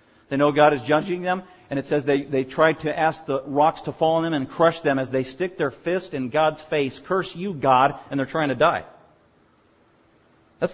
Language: English